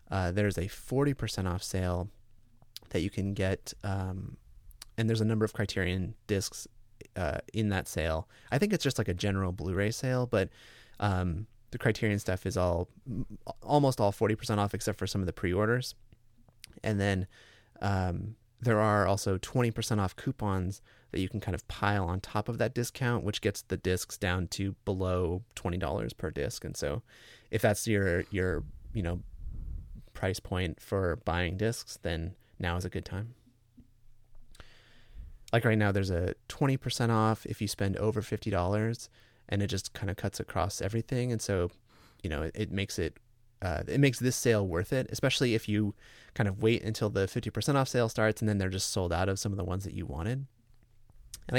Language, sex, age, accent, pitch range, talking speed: English, male, 30-49, American, 95-115 Hz, 185 wpm